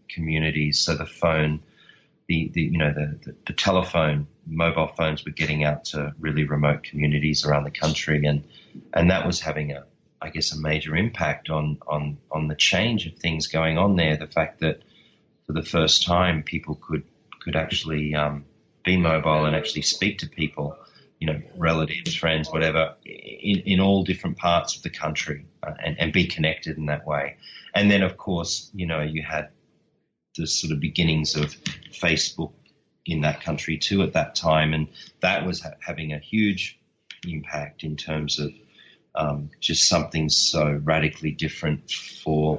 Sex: male